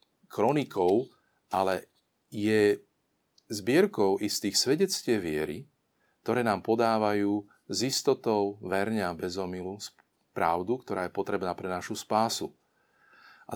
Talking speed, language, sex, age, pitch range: 95 wpm, Slovak, male, 40-59, 95-115 Hz